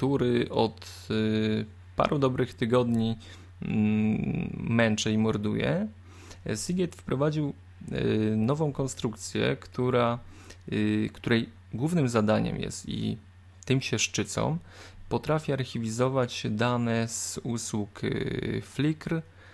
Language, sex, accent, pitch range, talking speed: Polish, male, native, 100-125 Hz, 80 wpm